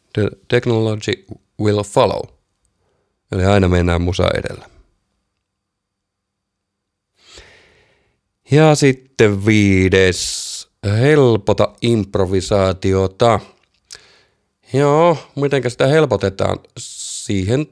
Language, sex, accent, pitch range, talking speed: Finnish, male, native, 95-120 Hz, 65 wpm